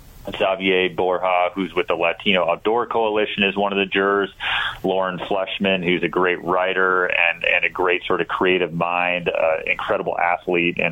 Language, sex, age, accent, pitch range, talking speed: English, male, 30-49, American, 85-95 Hz, 170 wpm